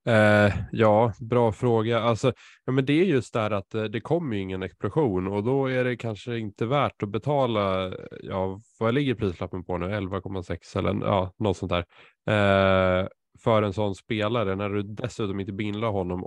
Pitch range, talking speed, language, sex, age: 95-115 Hz, 160 wpm, Swedish, male, 20-39